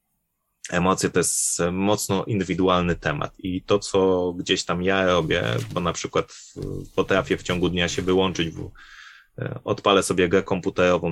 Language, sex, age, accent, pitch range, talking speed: Polish, male, 20-39, native, 90-110 Hz, 145 wpm